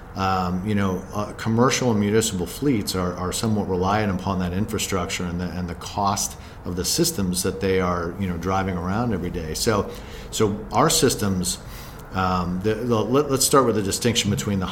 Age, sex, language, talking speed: 50-69, male, English, 190 wpm